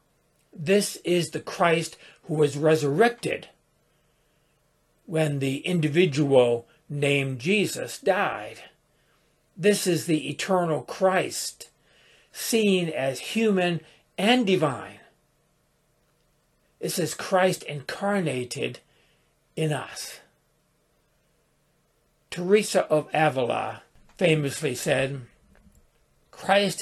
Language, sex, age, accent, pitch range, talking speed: English, male, 60-79, American, 150-180 Hz, 80 wpm